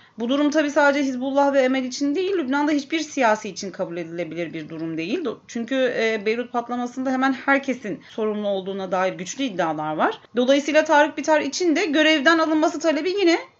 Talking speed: 170 wpm